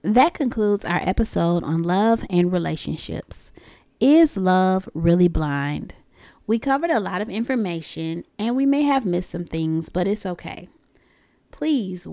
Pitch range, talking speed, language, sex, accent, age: 170-255 Hz, 145 wpm, English, female, American, 20-39